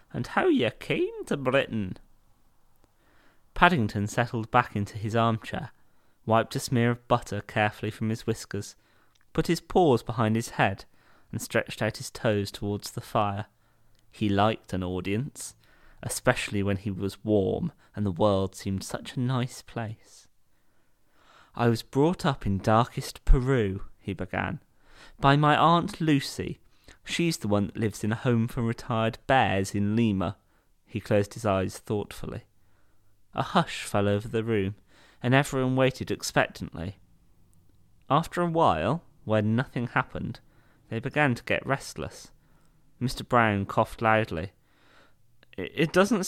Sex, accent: male, British